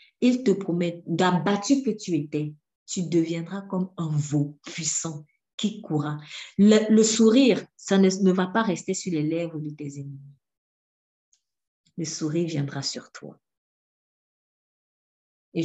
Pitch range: 145-190 Hz